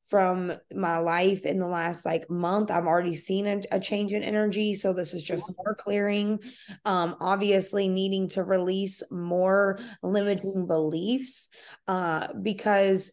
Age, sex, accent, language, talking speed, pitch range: 20-39, female, American, English, 145 wpm, 175-205 Hz